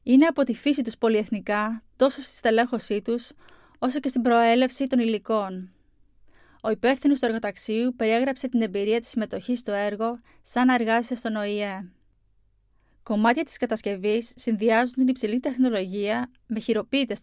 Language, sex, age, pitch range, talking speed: Greek, female, 20-39, 205-250 Hz, 140 wpm